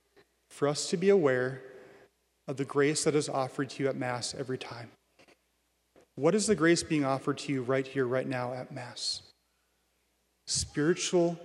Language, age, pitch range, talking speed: English, 30-49, 135-170 Hz, 170 wpm